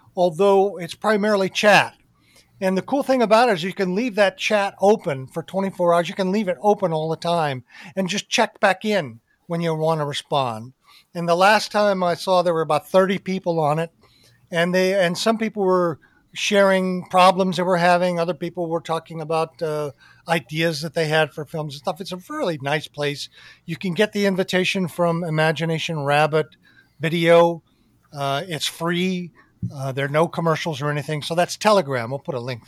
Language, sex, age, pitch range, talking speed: English, male, 50-69, 145-185 Hz, 195 wpm